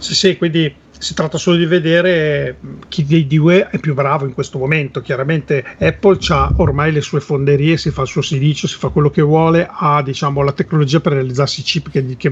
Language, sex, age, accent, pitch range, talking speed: Italian, male, 40-59, native, 135-160 Hz, 215 wpm